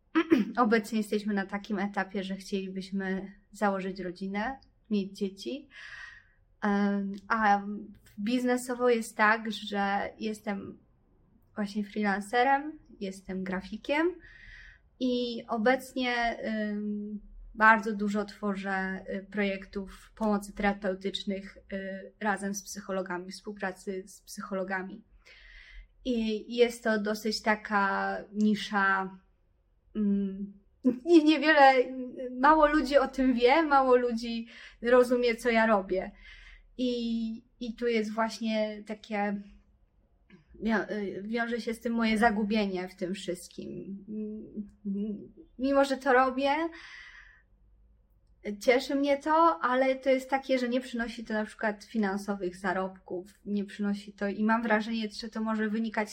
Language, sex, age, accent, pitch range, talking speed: Polish, female, 20-39, native, 200-240 Hz, 105 wpm